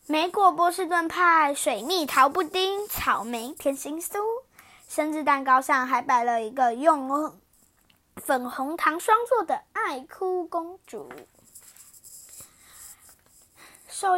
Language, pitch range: Chinese, 260-345 Hz